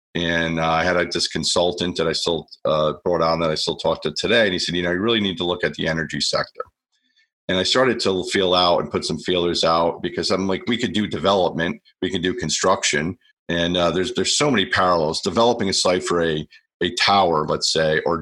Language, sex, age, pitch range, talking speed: English, male, 40-59, 85-95 Hz, 235 wpm